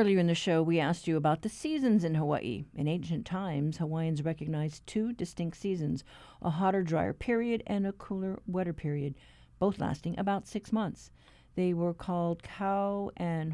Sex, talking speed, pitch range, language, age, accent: female, 175 wpm, 155-195 Hz, English, 50-69, American